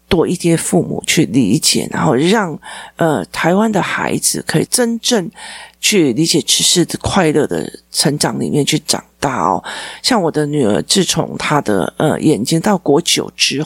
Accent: native